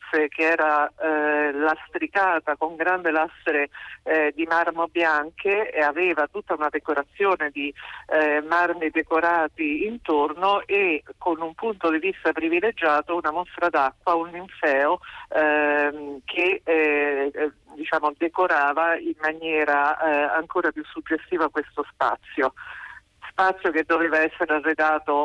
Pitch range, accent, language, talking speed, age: 150-180 Hz, native, Italian, 120 wpm, 50-69